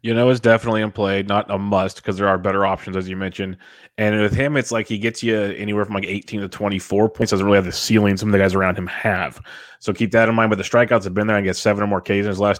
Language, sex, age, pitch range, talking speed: English, male, 20-39, 95-115 Hz, 305 wpm